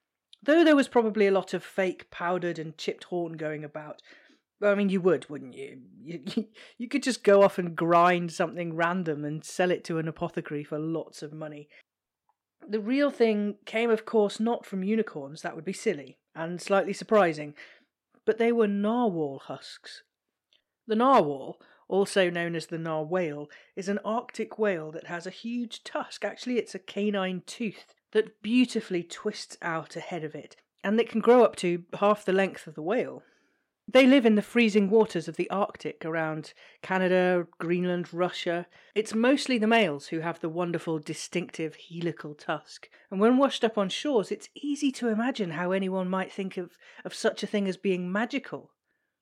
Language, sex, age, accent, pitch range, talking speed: English, female, 30-49, British, 170-220 Hz, 180 wpm